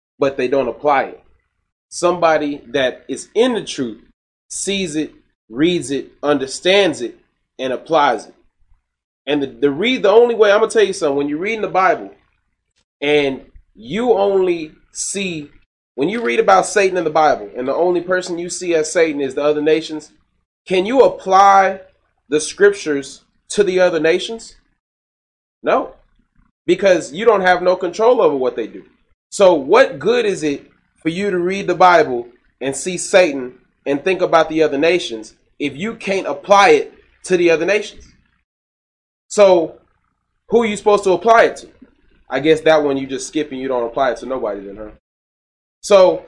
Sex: male